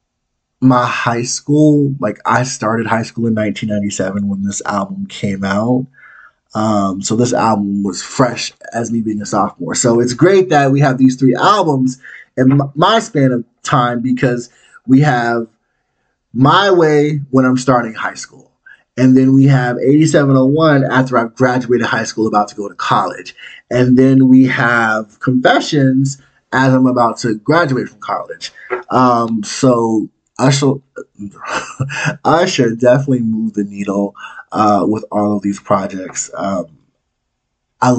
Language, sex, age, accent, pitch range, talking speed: English, male, 20-39, American, 110-135 Hz, 150 wpm